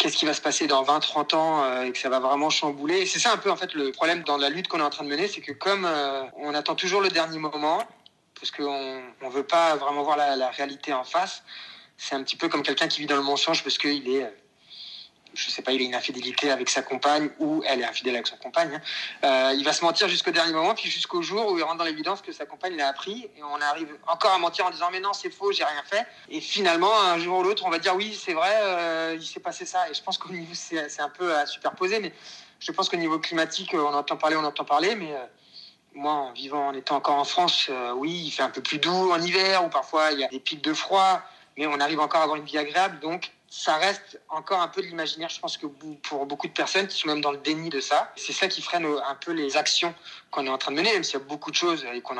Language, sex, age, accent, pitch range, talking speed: French, male, 30-49, French, 145-185 Hz, 280 wpm